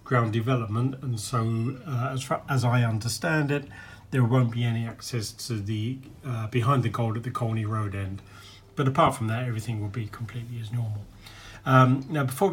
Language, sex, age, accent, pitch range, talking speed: English, male, 40-59, British, 110-130 Hz, 185 wpm